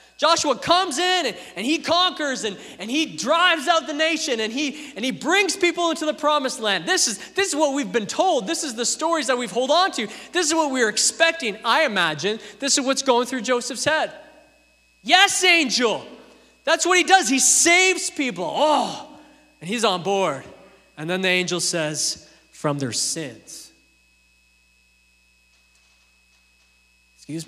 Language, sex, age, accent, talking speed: English, male, 20-39, American, 170 wpm